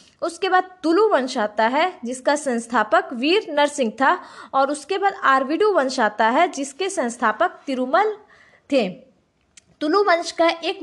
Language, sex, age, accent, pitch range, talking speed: Hindi, female, 20-39, native, 235-355 Hz, 145 wpm